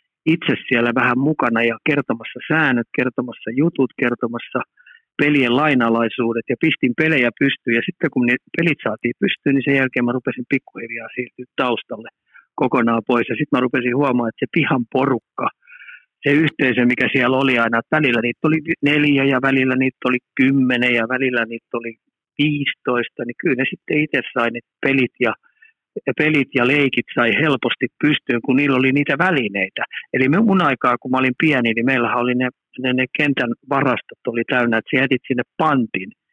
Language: Finnish